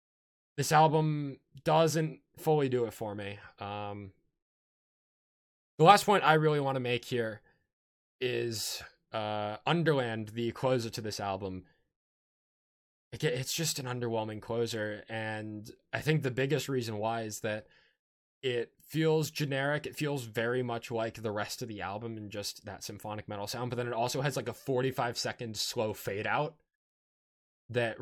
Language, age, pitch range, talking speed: English, 20-39, 105-135 Hz, 155 wpm